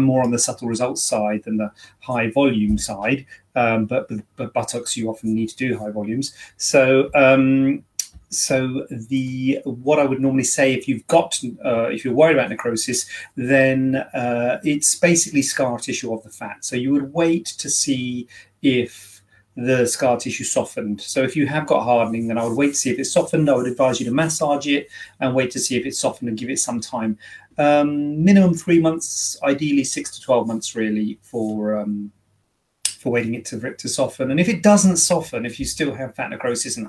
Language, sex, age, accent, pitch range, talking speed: English, male, 40-59, British, 110-135 Hz, 205 wpm